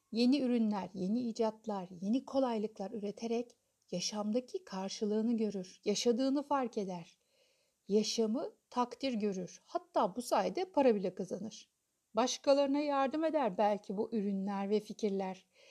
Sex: female